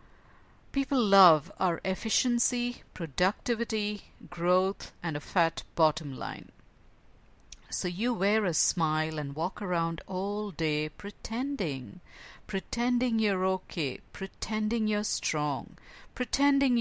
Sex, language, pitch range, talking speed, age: female, English, 165-225 Hz, 105 wpm, 50-69